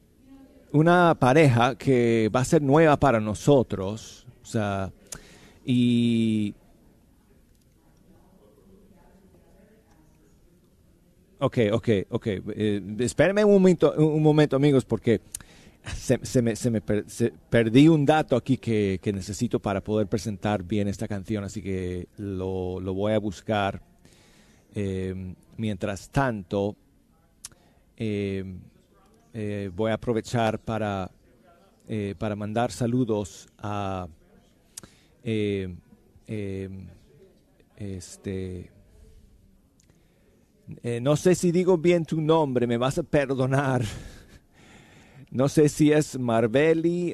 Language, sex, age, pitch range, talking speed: Spanish, male, 40-59, 100-135 Hz, 105 wpm